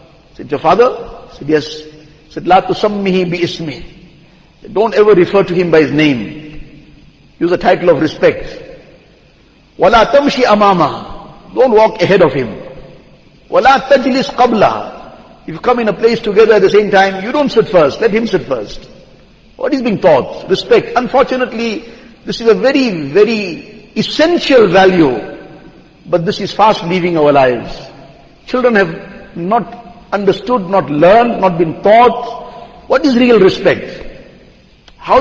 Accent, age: Indian, 50-69